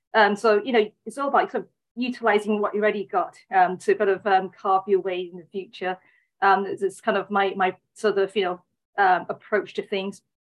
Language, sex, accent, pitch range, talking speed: English, female, British, 190-220 Hz, 230 wpm